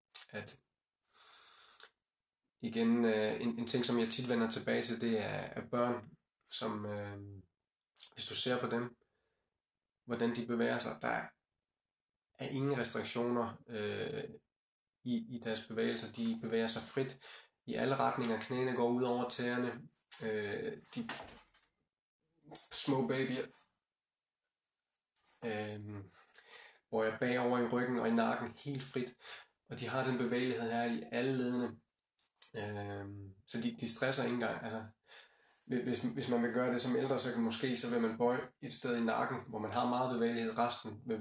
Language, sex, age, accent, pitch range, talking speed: Danish, male, 20-39, native, 110-125 Hz, 140 wpm